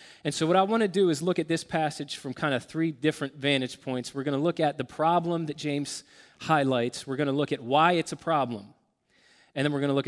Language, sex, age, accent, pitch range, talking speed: English, male, 30-49, American, 135-170 Hz, 260 wpm